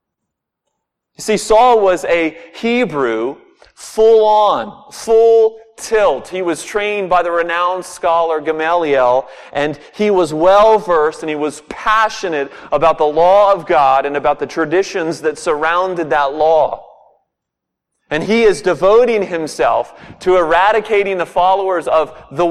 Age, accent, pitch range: 40-59, American, 165-215 Hz